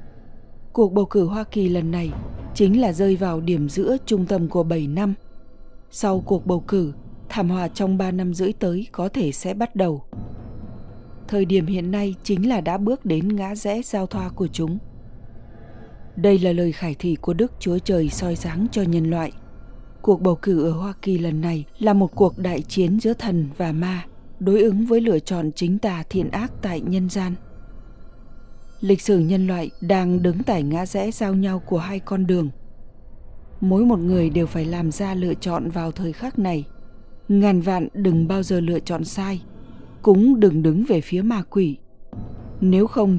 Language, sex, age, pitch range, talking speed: Vietnamese, female, 20-39, 165-200 Hz, 190 wpm